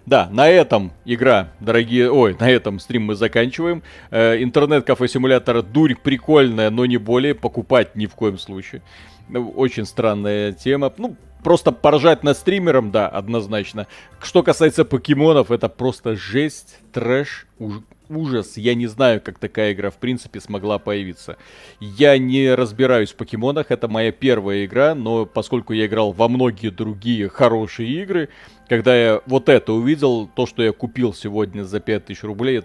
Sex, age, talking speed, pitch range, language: male, 40-59, 160 wpm, 105-135 Hz, Russian